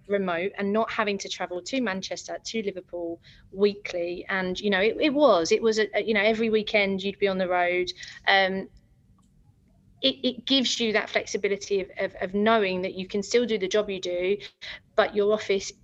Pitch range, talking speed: 185-220 Hz, 200 wpm